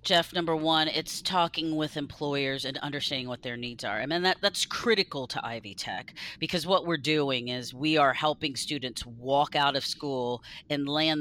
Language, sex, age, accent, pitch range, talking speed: English, female, 40-59, American, 135-170 Hz, 200 wpm